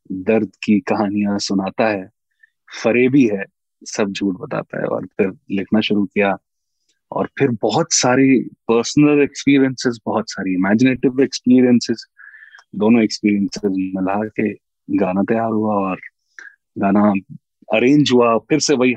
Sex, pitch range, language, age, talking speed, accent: male, 100-120 Hz, Hindi, 20-39, 125 wpm, native